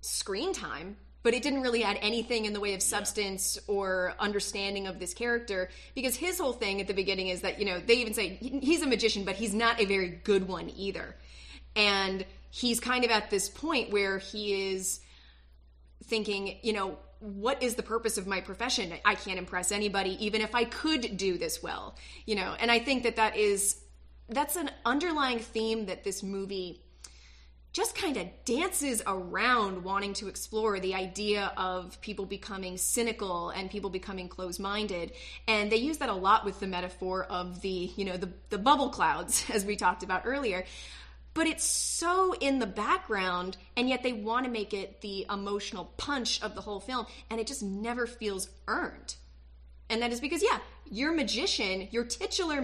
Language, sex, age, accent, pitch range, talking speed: English, female, 30-49, American, 190-235 Hz, 185 wpm